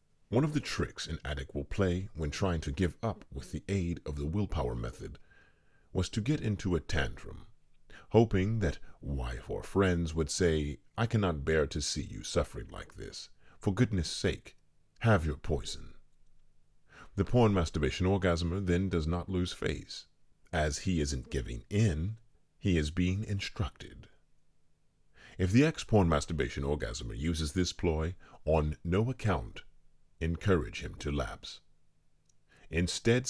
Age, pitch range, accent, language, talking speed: 40-59, 75-95 Hz, American, English, 150 wpm